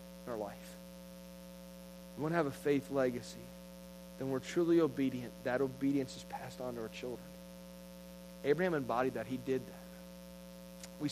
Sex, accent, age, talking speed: male, American, 30-49, 150 wpm